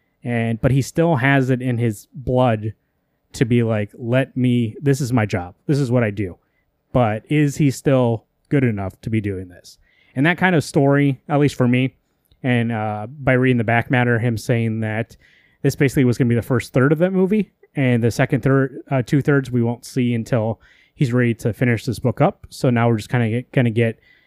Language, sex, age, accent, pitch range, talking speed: English, male, 20-39, American, 115-140 Hz, 225 wpm